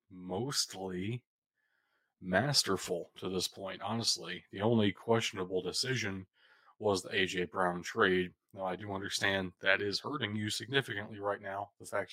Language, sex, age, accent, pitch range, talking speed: English, male, 20-39, American, 95-115 Hz, 140 wpm